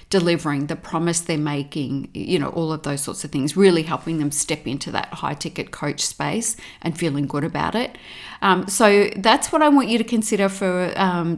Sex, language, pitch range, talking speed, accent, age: female, English, 170-215 Hz, 205 wpm, Australian, 40-59